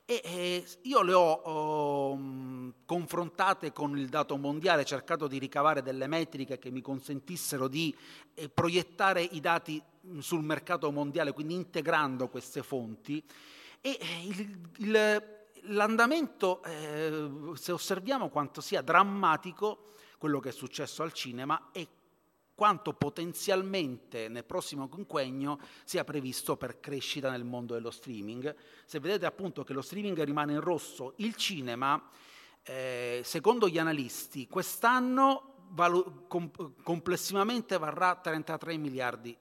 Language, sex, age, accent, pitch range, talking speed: Italian, male, 30-49, native, 135-180 Hz, 120 wpm